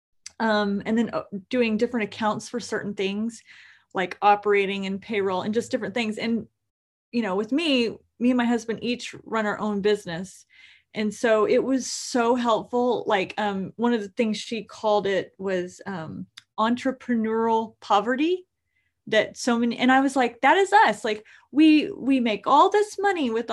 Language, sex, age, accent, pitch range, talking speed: English, female, 30-49, American, 210-260 Hz, 175 wpm